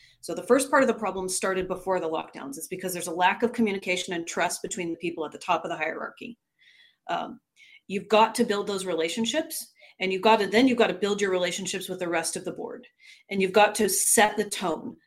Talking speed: 240 wpm